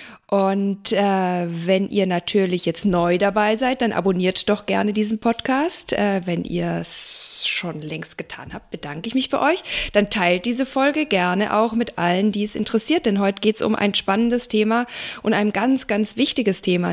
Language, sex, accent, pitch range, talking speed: German, female, German, 185-230 Hz, 190 wpm